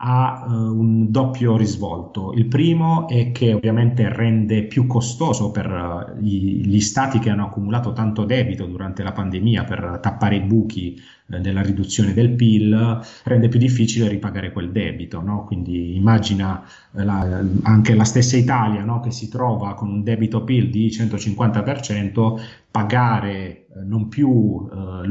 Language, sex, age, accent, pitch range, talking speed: Italian, male, 30-49, native, 100-120 Hz, 150 wpm